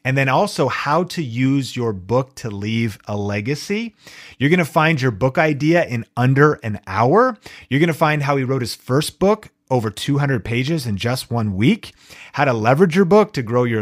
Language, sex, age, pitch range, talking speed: English, male, 30-49, 120-165 Hz, 200 wpm